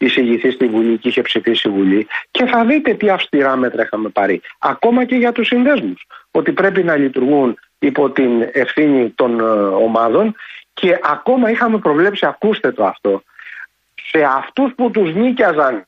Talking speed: 155 wpm